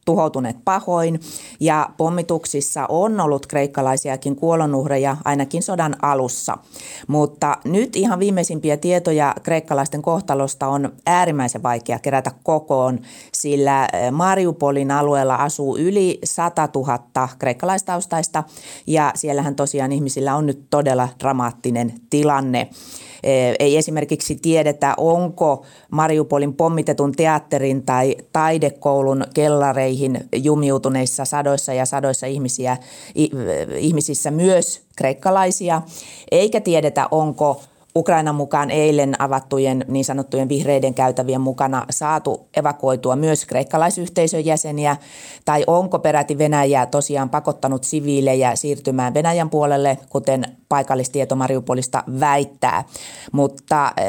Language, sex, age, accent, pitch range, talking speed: Finnish, female, 30-49, native, 135-155 Hz, 100 wpm